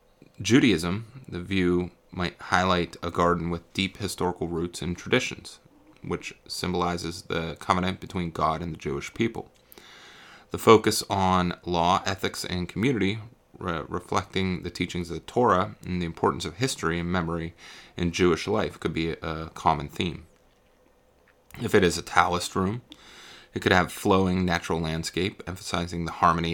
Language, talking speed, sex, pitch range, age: English, 150 wpm, male, 85-95 Hz, 30-49